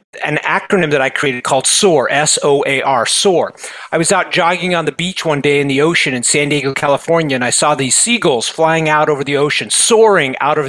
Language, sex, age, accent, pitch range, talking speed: English, male, 40-59, American, 150-185 Hz, 215 wpm